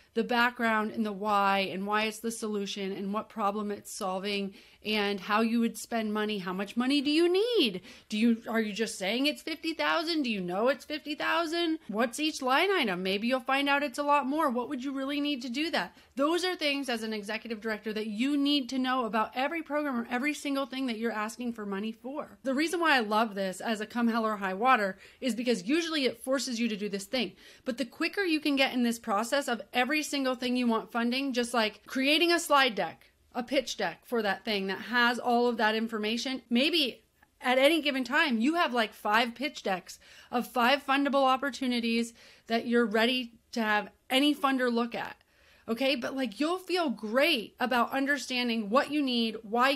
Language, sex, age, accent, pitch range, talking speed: English, female, 30-49, American, 220-280 Hz, 215 wpm